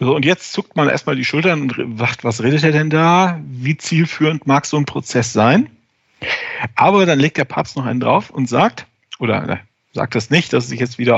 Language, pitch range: German, 125-190 Hz